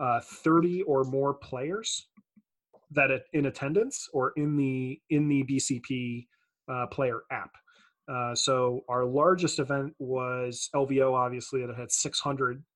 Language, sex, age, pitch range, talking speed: English, male, 30-49, 130-160 Hz, 130 wpm